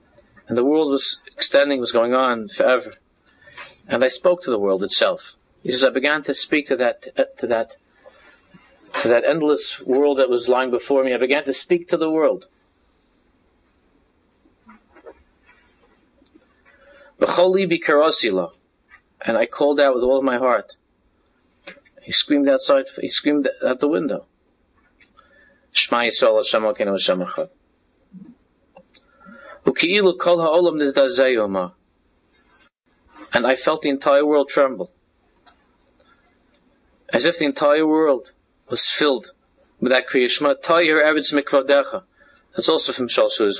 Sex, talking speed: male, 115 wpm